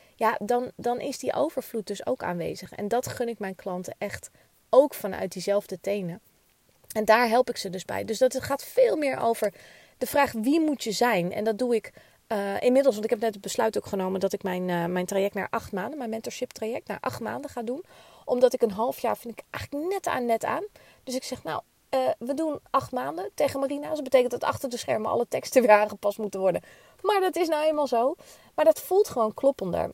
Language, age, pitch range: Dutch, 30-49, 205-265 Hz